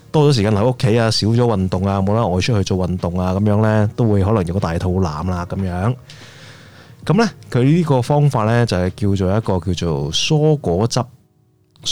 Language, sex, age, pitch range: Chinese, male, 20-39, 95-125 Hz